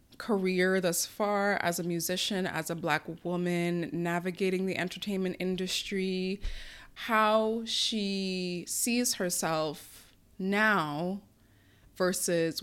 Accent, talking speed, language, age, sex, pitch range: American, 95 wpm, English, 20-39, female, 170-210 Hz